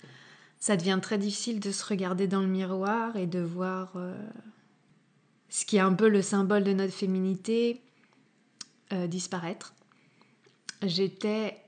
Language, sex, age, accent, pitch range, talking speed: French, female, 20-39, French, 185-220 Hz, 140 wpm